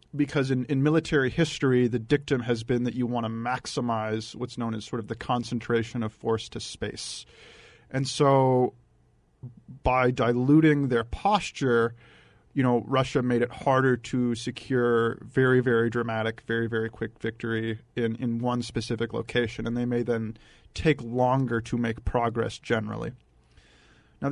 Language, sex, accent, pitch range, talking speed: English, male, American, 115-135 Hz, 155 wpm